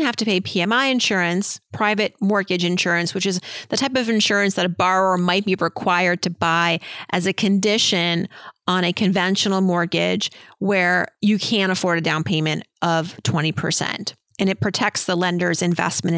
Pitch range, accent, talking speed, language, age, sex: 175-215 Hz, American, 165 wpm, English, 30-49, female